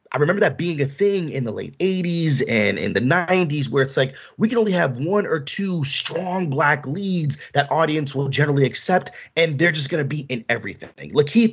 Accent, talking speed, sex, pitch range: American, 215 wpm, male, 135-175 Hz